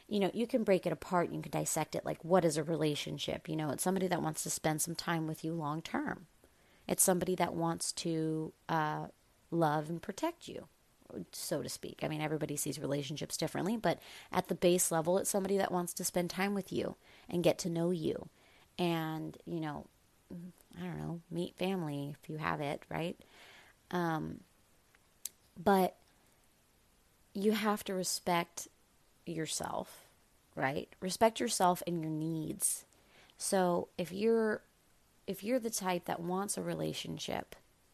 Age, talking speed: 30-49, 165 wpm